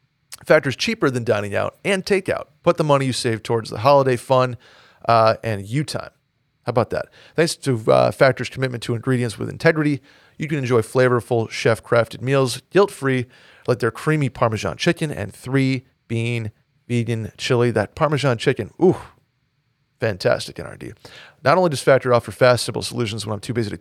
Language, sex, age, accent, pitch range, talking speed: English, male, 40-59, American, 115-140 Hz, 170 wpm